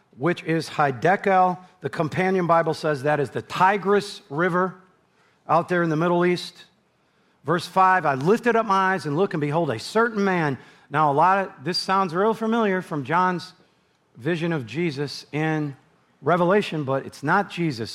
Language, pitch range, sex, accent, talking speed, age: English, 155-195 Hz, male, American, 170 wpm, 40-59